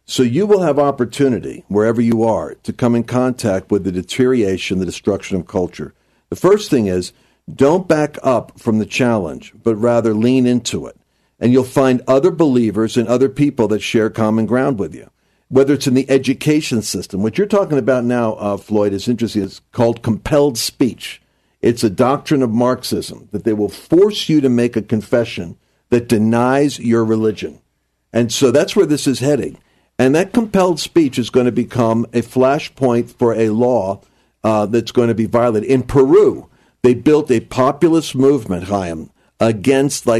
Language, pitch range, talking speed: English, 110-135 Hz, 180 wpm